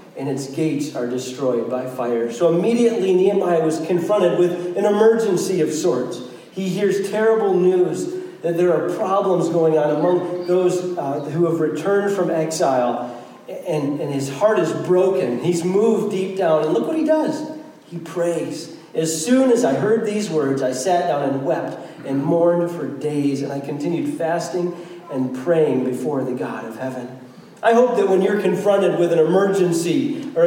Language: English